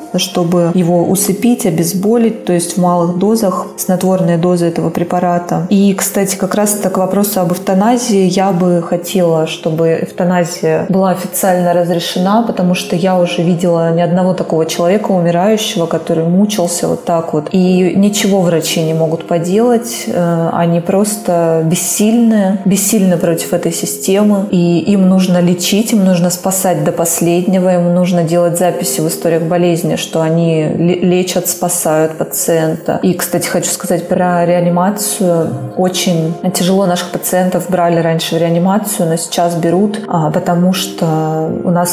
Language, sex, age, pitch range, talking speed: Russian, female, 20-39, 170-190 Hz, 140 wpm